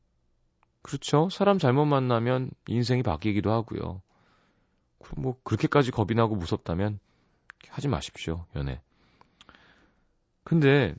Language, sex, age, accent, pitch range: Korean, male, 30-49, native, 80-130 Hz